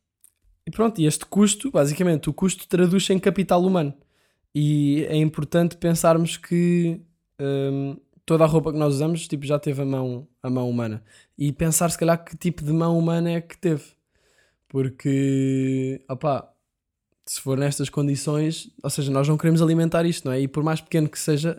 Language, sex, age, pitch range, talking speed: Portuguese, male, 10-29, 135-160 Hz, 180 wpm